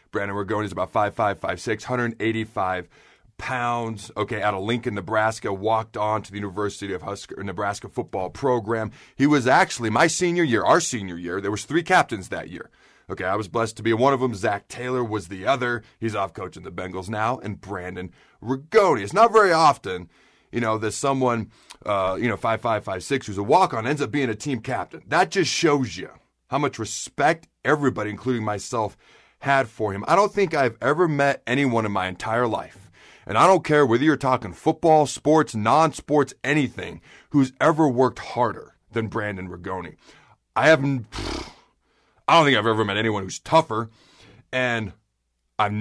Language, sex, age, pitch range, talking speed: English, male, 30-49, 105-135 Hz, 190 wpm